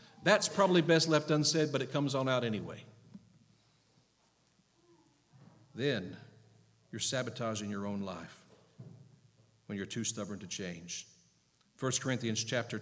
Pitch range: 115-155 Hz